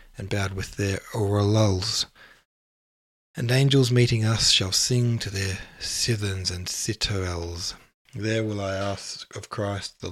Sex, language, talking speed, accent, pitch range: male, English, 135 wpm, Australian, 95-115 Hz